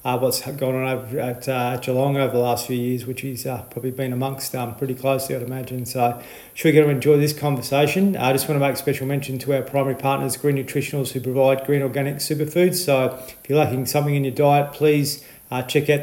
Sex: male